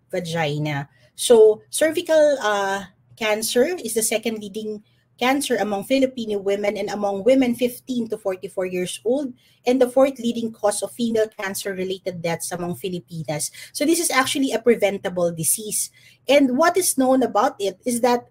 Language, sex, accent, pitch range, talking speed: English, female, Filipino, 195-260 Hz, 155 wpm